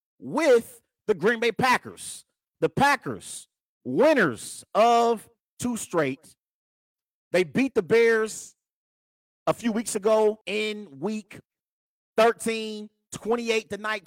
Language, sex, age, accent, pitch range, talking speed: English, male, 30-49, American, 165-225 Hz, 100 wpm